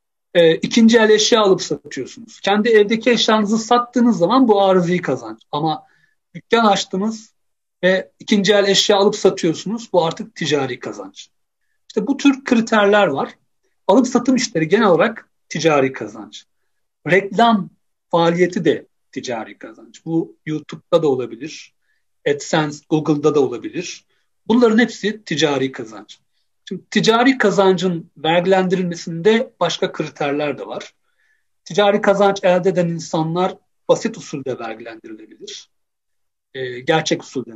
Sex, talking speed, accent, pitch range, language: male, 120 wpm, native, 155-220 Hz, Turkish